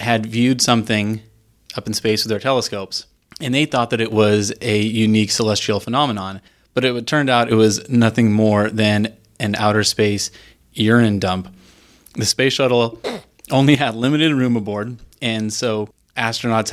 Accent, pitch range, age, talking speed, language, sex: American, 105-120 Hz, 20-39, 160 wpm, English, male